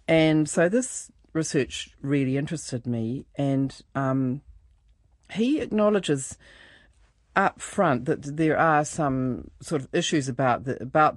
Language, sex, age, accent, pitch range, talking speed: English, female, 40-59, Australian, 125-155 Hz, 125 wpm